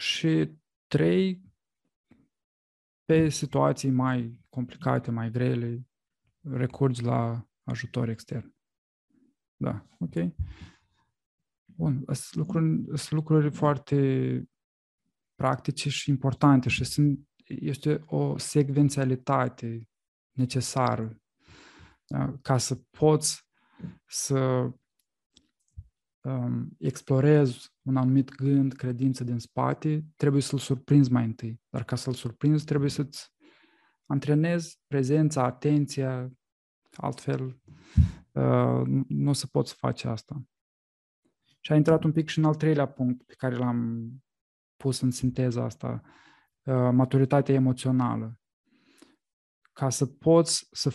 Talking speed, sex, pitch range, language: 100 wpm, male, 115-140 Hz, Romanian